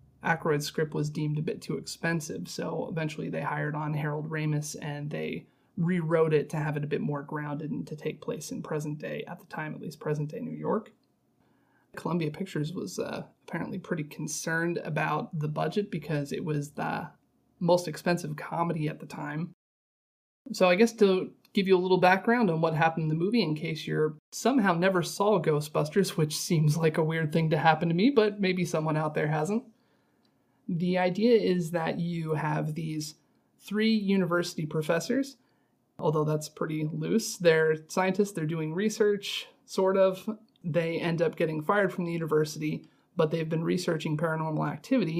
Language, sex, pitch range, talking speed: English, male, 155-190 Hz, 180 wpm